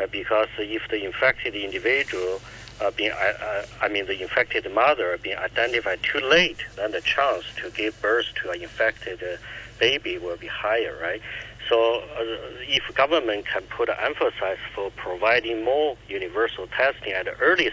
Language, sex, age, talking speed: English, male, 60-79, 160 wpm